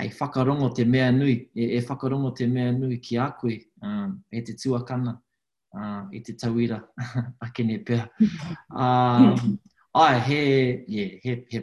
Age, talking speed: 20-39, 135 wpm